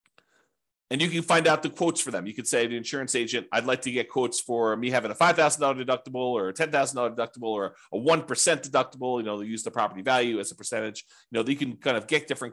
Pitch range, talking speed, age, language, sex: 125-160 Hz, 255 wpm, 40-59, English, male